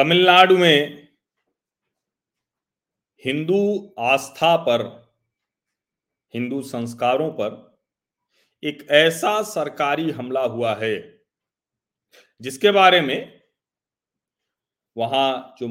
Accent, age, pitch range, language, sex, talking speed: native, 40-59, 135-180 Hz, Hindi, male, 75 wpm